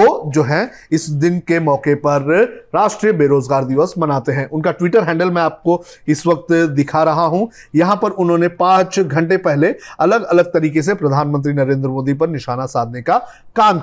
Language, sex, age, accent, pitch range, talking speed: Hindi, male, 30-49, native, 150-180 Hz, 175 wpm